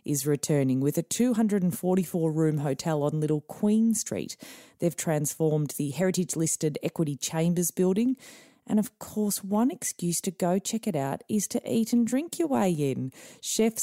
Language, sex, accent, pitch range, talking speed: English, female, Australian, 140-185 Hz, 155 wpm